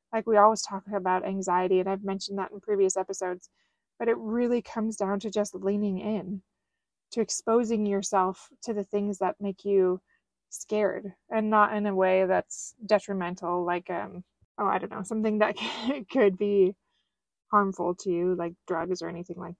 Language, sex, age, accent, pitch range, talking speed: English, female, 20-39, American, 190-220 Hz, 175 wpm